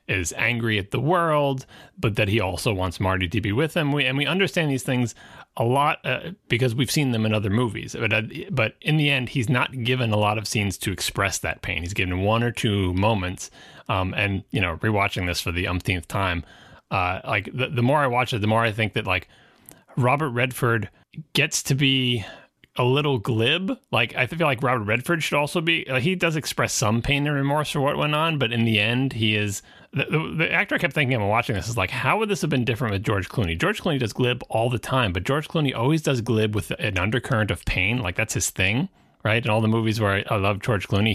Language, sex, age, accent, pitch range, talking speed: English, male, 30-49, American, 105-140 Hz, 240 wpm